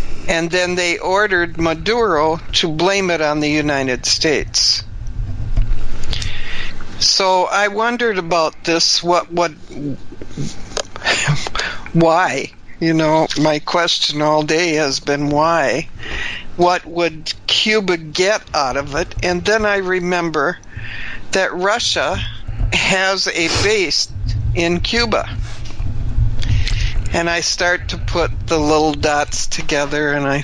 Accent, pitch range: American, 115-180 Hz